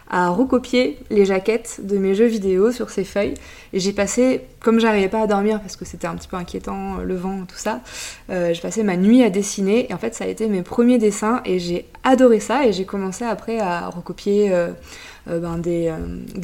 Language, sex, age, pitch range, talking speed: French, female, 20-39, 180-220 Hz, 225 wpm